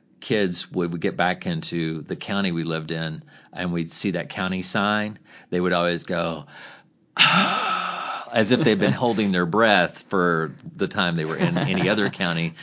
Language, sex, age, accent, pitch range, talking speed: English, male, 40-59, American, 90-125 Hz, 180 wpm